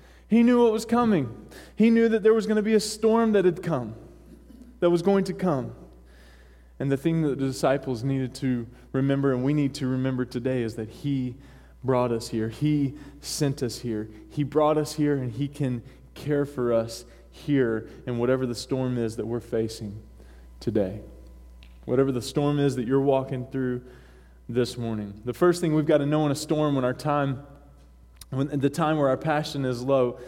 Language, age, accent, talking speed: English, 20-39, American, 195 wpm